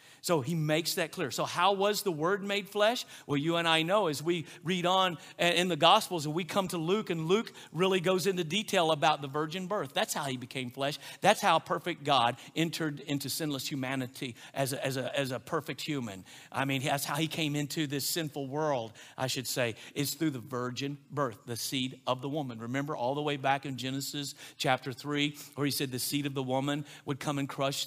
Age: 50-69